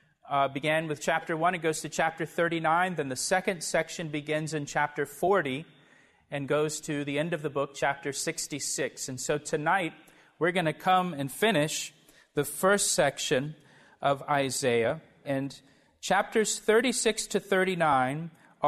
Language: English